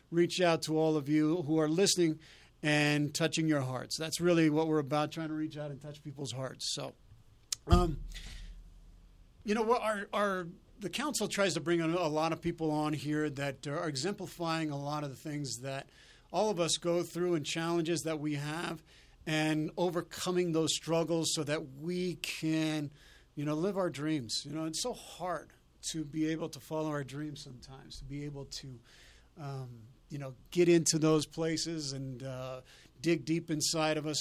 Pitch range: 145-170 Hz